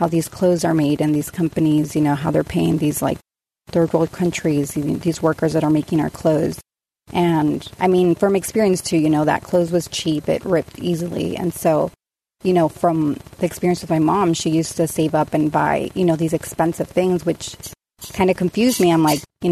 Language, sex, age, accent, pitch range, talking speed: English, female, 30-49, American, 155-180 Hz, 205 wpm